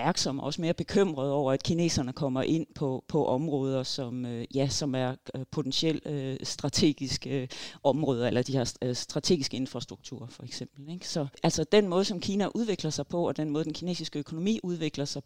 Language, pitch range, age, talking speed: Danish, 125-155 Hz, 40-59, 175 wpm